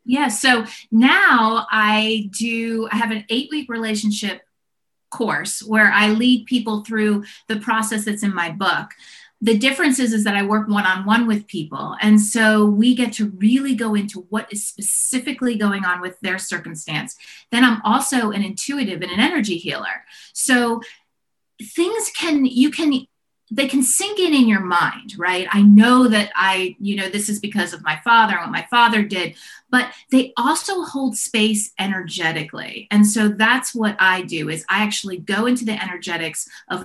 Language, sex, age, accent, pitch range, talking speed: English, female, 30-49, American, 195-230 Hz, 175 wpm